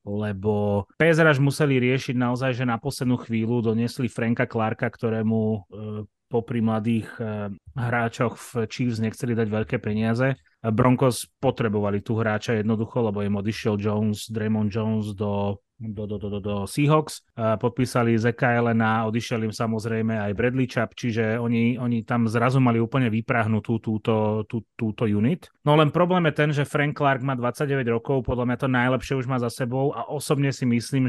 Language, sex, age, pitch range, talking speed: Slovak, male, 30-49, 110-130 Hz, 165 wpm